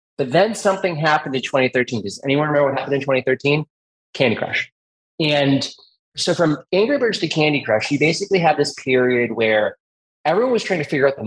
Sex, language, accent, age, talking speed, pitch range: male, English, American, 20-39, 190 wpm, 120-150 Hz